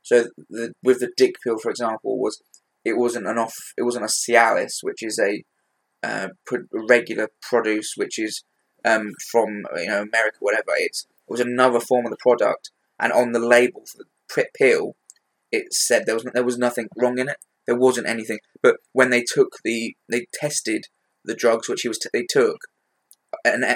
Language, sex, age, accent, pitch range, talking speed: English, male, 20-39, British, 115-130 Hz, 185 wpm